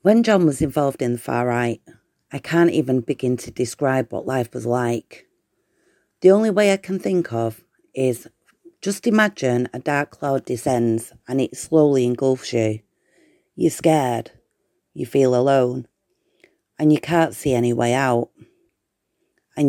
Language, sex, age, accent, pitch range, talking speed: English, female, 30-49, British, 125-160 Hz, 150 wpm